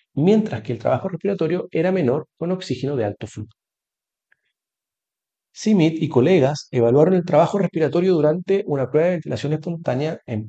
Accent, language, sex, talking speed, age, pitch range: Argentinian, Spanish, male, 150 wpm, 40-59, 120-175 Hz